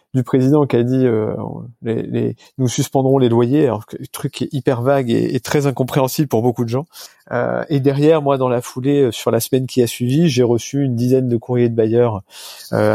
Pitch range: 120-140 Hz